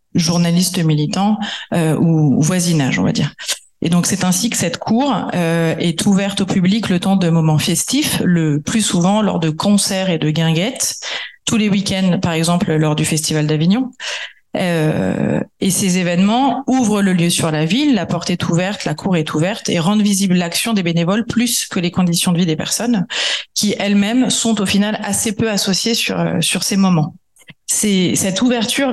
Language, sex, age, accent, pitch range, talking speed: French, female, 30-49, French, 175-210 Hz, 185 wpm